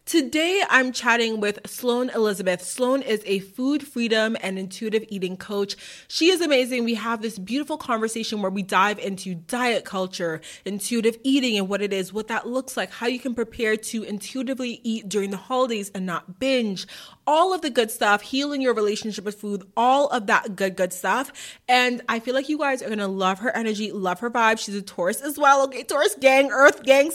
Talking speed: 205 wpm